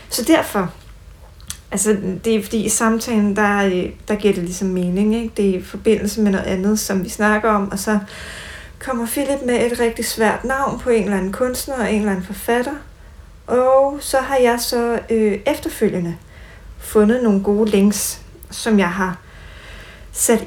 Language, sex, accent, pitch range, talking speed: Danish, female, native, 190-230 Hz, 180 wpm